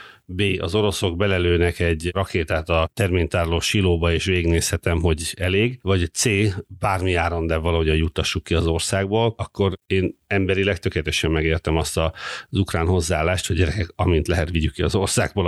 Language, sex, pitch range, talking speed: Hungarian, male, 85-105 Hz, 155 wpm